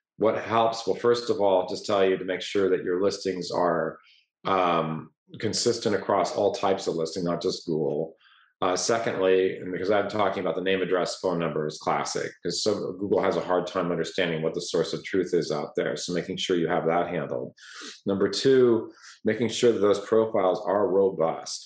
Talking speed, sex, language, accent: 195 wpm, male, English, American